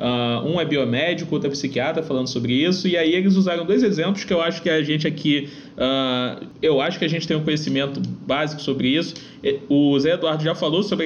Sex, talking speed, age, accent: male, 225 wpm, 20-39, Brazilian